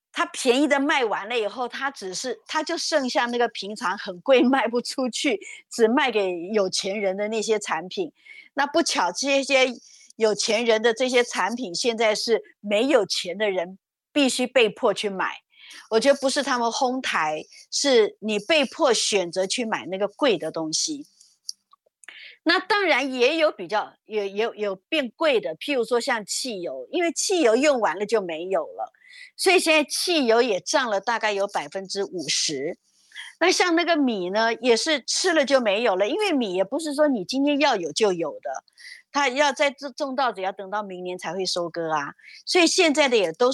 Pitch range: 205-300 Hz